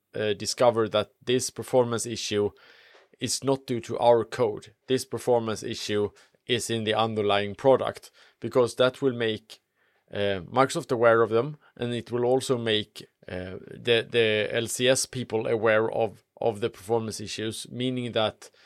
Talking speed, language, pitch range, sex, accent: 150 wpm, English, 105-125 Hz, male, Norwegian